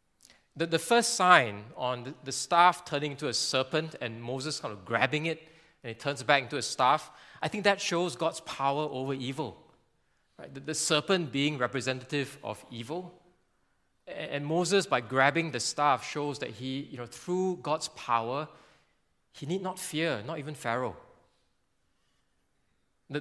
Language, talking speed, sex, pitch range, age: English, 165 wpm, male, 130-165 Hz, 20-39